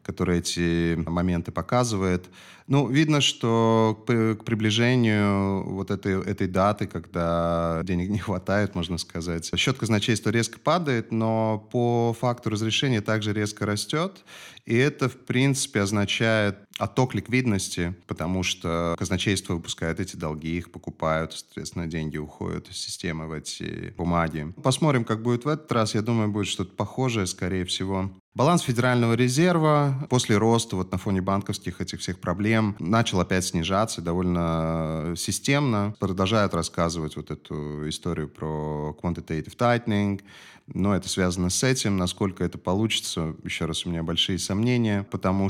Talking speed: 140 wpm